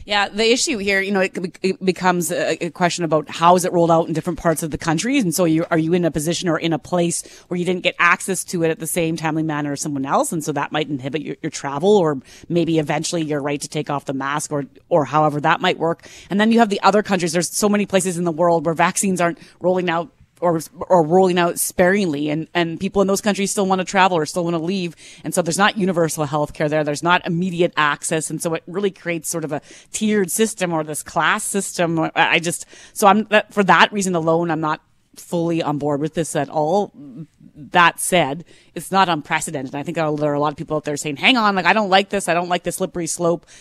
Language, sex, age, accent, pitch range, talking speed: English, female, 30-49, American, 155-190 Hz, 250 wpm